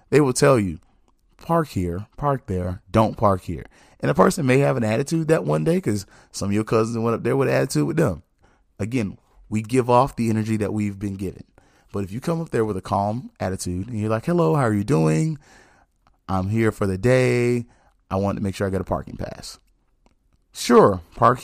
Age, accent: 30-49, American